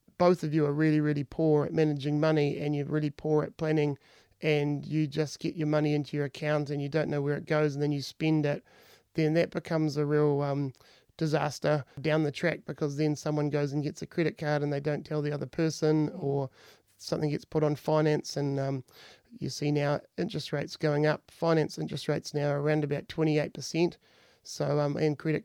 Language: English